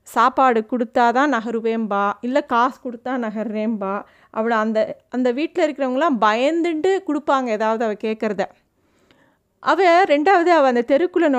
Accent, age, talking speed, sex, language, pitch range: native, 30-49, 120 wpm, female, Tamil, 235-290 Hz